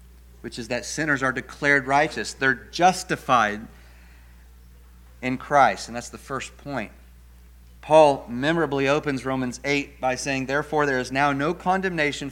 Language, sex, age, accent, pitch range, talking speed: English, male, 40-59, American, 115-180 Hz, 140 wpm